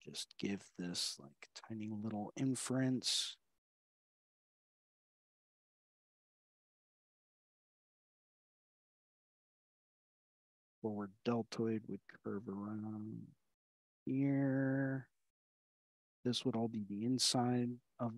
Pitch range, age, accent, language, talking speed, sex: 105-135 Hz, 50-69, American, English, 65 wpm, male